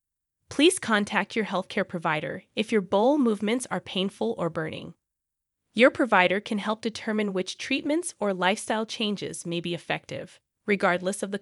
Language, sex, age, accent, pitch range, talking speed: English, female, 30-49, American, 190-260 Hz, 150 wpm